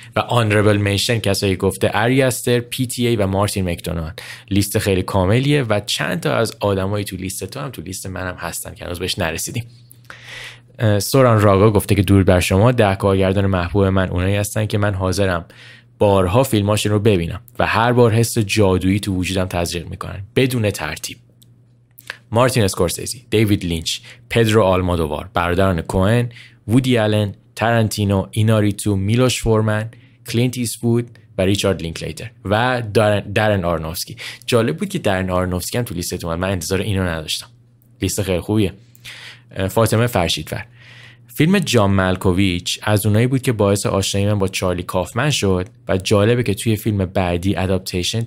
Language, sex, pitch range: Persian, male, 95-120 Hz